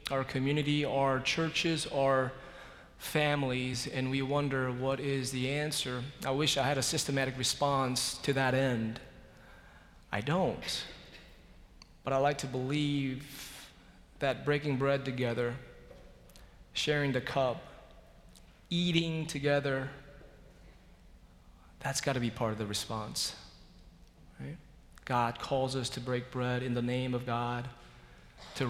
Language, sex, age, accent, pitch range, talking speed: English, male, 30-49, American, 120-145 Hz, 125 wpm